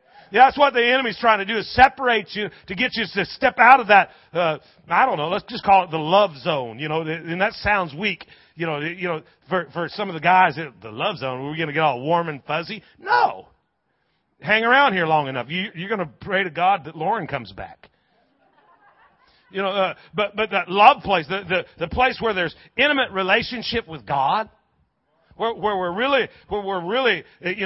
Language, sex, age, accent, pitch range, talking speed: English, male, 40-59, American, 175-235 Hz, 220 wpm